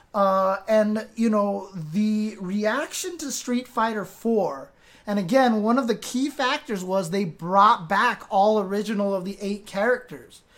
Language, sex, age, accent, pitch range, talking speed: English, male, 30-49, American, 200-245 Hz, 155 wpm